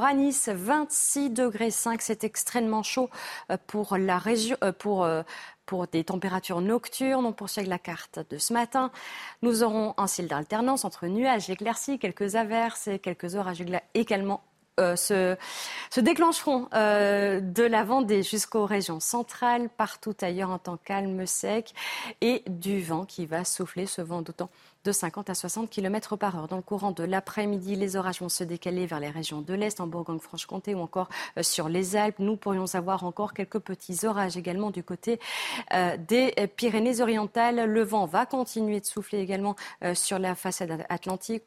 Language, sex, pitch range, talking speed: French, female, 185-230 Hz, 170 wpm